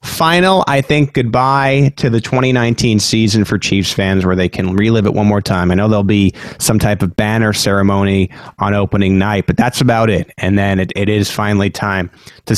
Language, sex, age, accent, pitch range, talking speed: English, male, 30-49, American, 100-130 Hz, 205 wpm